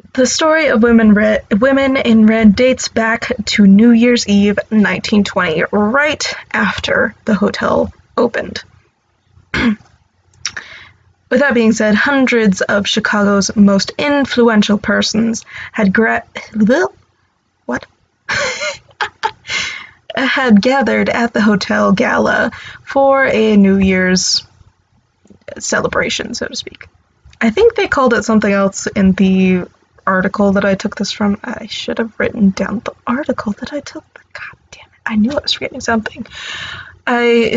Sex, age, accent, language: female, 20-39, American, English